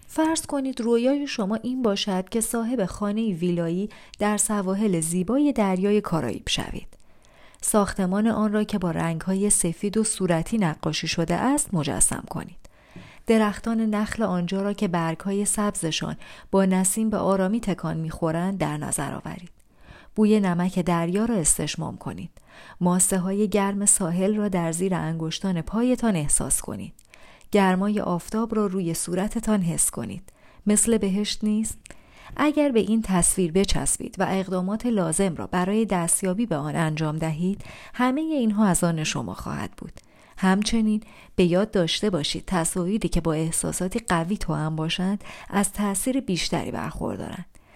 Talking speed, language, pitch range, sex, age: 140 wpm, Persian, 170-215 Hz, female, 30-49